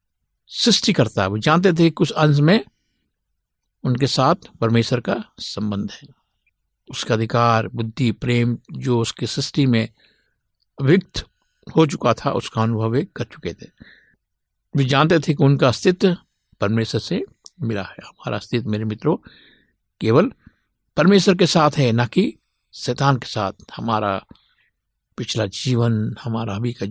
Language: Hindi